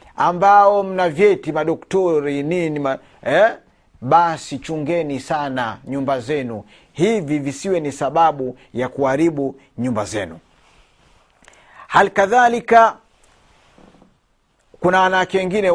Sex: male